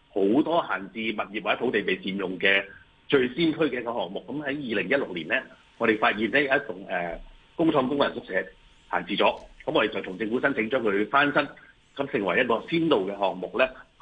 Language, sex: Chinese, male